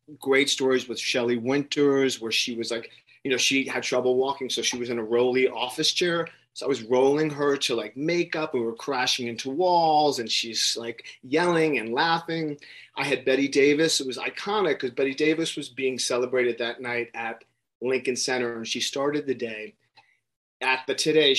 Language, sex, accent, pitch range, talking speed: English, male, American, 120-145 Hz, 190 wpm